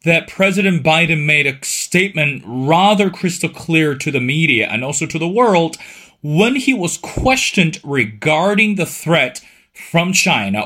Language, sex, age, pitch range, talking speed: English, male, 30-49, 145-190 Hz, 145 wpm